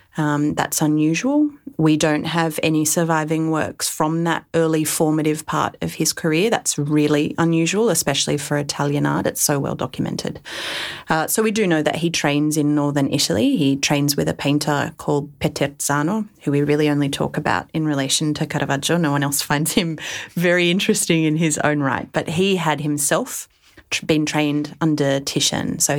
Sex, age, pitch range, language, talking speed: female, 30-49, 145-165 Hz, English, 175 wpm